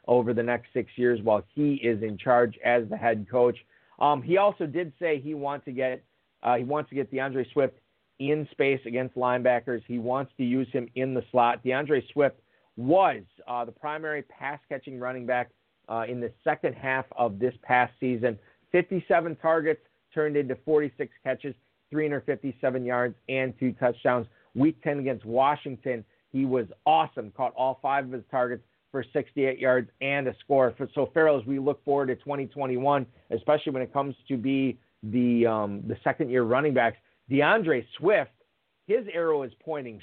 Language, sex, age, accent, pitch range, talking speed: English, male, 50-69, American, 120-140 Hz, 165 wpm